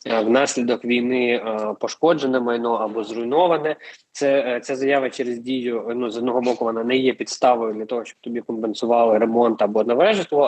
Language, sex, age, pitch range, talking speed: Ukrainian, male, 20-39, 115-130 Hz, 170 wpm